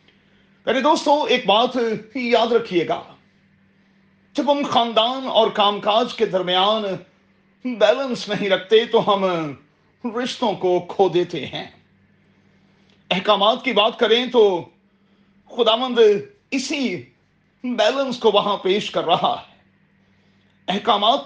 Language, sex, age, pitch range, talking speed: Urdu, male, 40-59, 190-240 Hz, 115 wpm